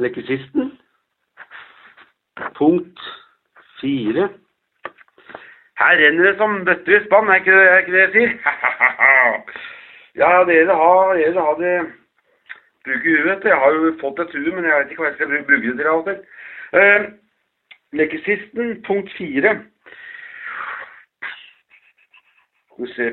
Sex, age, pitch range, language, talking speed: male, 60-79, 140-210 Hz, English, 90 wpm